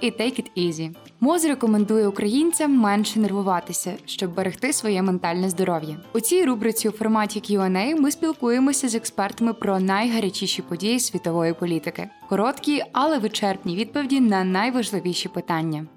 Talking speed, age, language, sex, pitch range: 130 wpm, 20-39, Ukrainian, female, 190-250 Hz